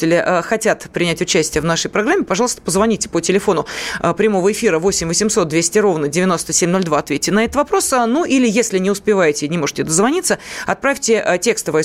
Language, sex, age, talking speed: Russian, female, 20-39, 155 wpm